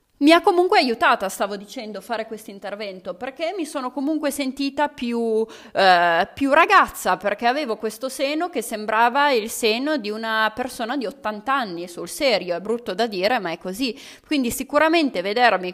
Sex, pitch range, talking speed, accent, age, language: female, 205-280 Hz, 170 wpm, native, 30-49, Italian